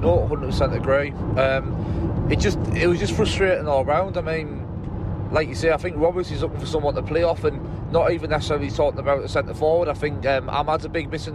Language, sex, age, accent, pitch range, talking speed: English, male, 20-39, British, 135-155 Hz, 235 wpm